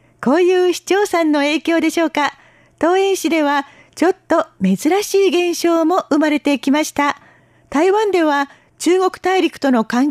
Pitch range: 280-345 Hz